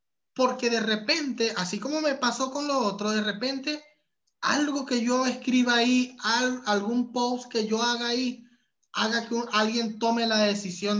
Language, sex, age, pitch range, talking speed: Spanish, male, 20-39, 205-255 Hz, 165 wpm